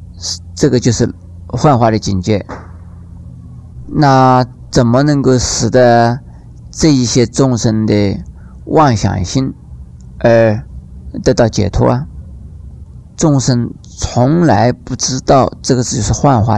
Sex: male